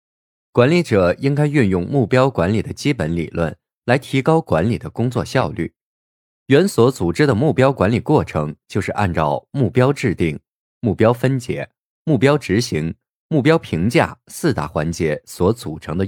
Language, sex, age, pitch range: Chinese, male, 20-39, 85-135 Hz